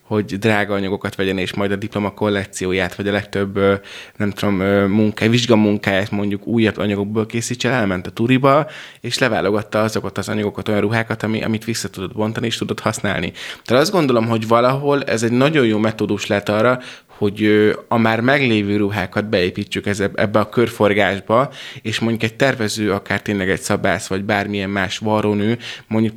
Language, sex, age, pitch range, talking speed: Hungarian, male, 20-39, 100-115 Hz, 160 wpm